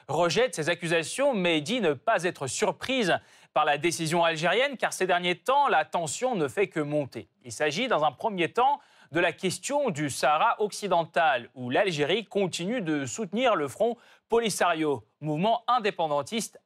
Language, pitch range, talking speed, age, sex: French, 155-230 Hz, 160 wpm, 30-49, male